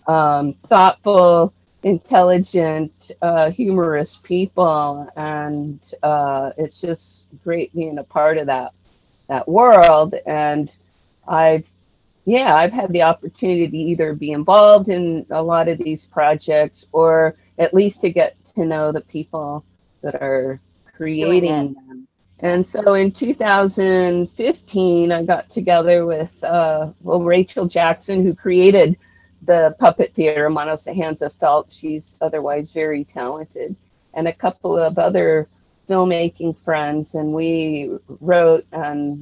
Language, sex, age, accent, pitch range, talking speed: English, female, 40-59, American, 150-175 Hz, 125 wpm